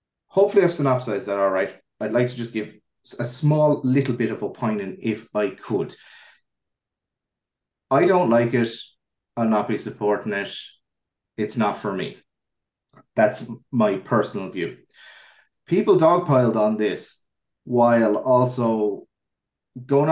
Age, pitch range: 30-49, 105-135 Hz